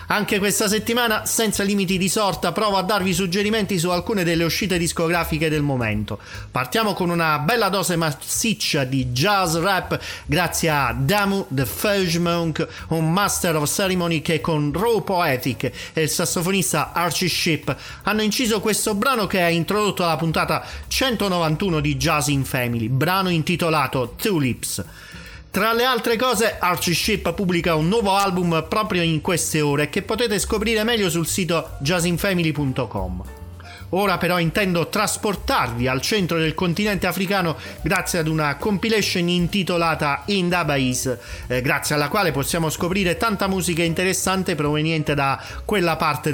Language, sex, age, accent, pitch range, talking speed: Italian, male, 40-59, native, 150-200 Hz, 145 wpm